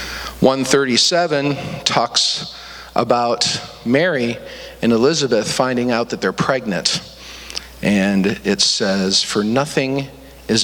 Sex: male